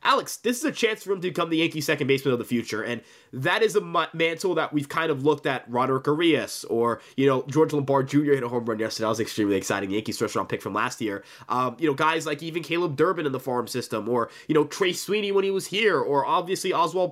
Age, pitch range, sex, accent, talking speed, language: 20-39, 130-180 Hz, male, American, 265 wpm, English